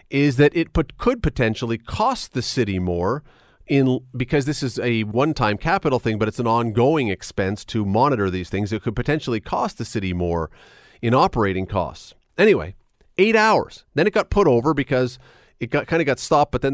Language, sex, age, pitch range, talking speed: English, male, 40-59, 110-160 Hz, 195 wpm